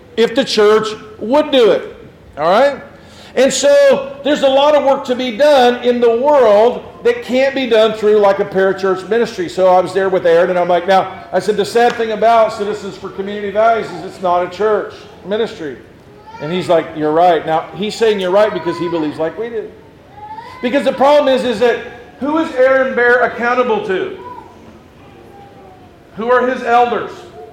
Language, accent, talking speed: English, American, 190 wpm